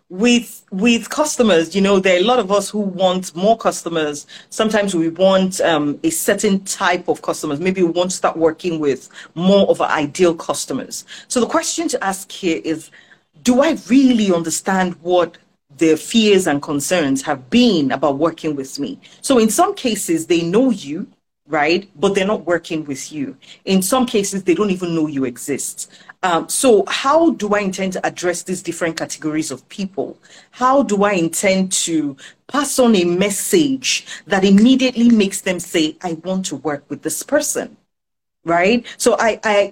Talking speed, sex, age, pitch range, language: 180 wpm, female, 40-59, 165-215 Hz, English